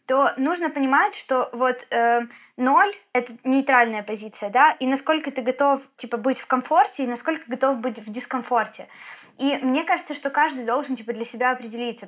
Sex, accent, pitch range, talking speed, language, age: female, native, 230-265 Hz, 180 wpm, Ukrainian, 20-39